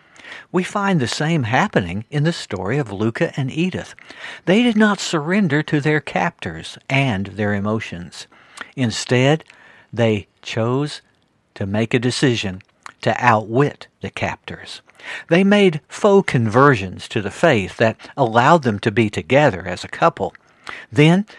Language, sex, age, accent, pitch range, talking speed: English, male, 60-79, American, 110-165 Hz, 140 wpm